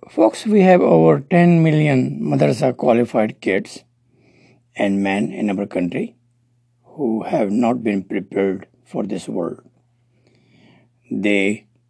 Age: 60-79